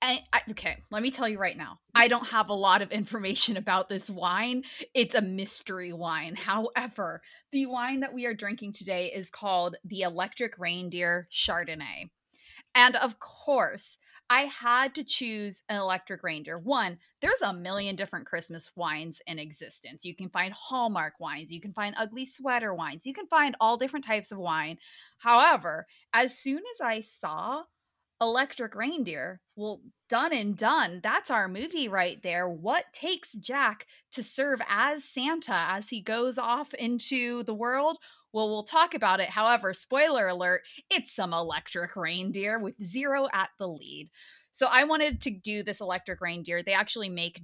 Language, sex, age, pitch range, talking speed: English, female, 20-39, 185-255 Hz, 165 wpm